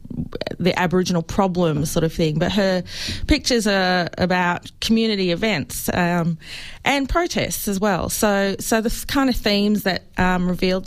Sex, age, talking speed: female, 30-49, 150 wpm